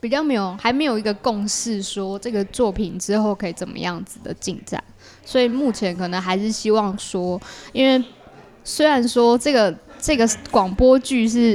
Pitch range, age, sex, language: 195-235 Hz, 20-39, female, Chinese